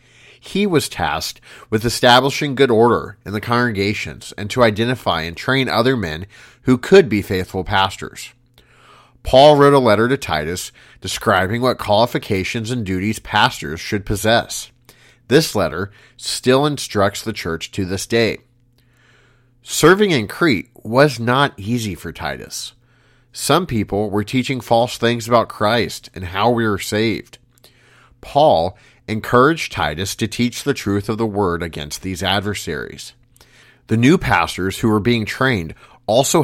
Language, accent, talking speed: English, American, 145 wpm